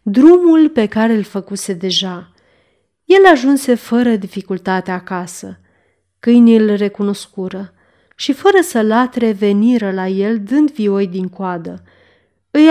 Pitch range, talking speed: 195-255 Hz, 125 wpm